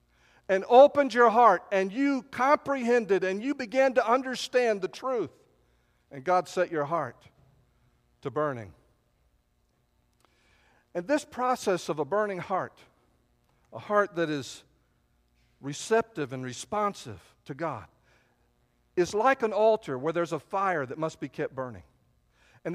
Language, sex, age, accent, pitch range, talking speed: English, male, 50-69, American, 135-230 Hz, 135 wpm